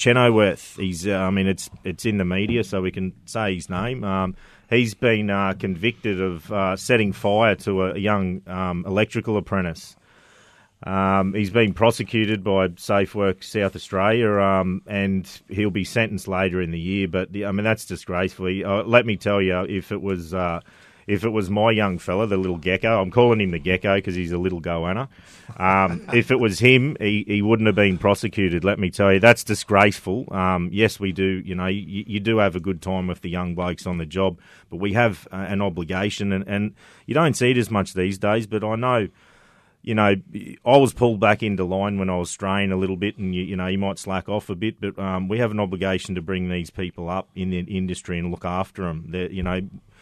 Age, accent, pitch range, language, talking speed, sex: 30-49, Australian, 95-105 Hz, English, 220 wpm, male